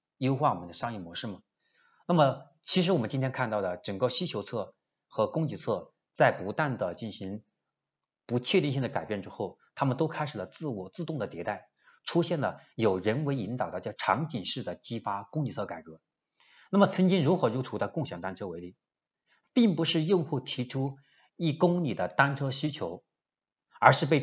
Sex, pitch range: male, 110-165 Hz